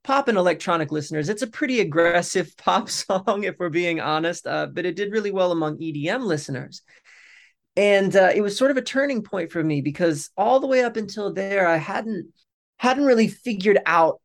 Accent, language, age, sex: American, English, 20-39, male